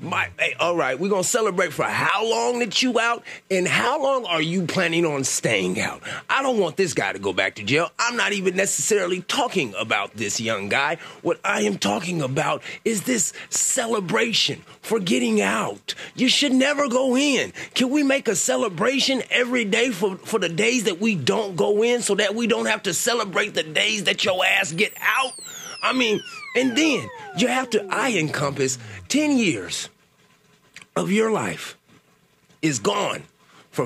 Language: English